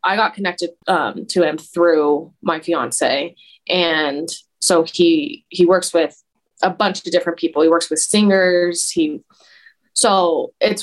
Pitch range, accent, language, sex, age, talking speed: 160-190 Hz, American, English, female, 20-39, 150 wpm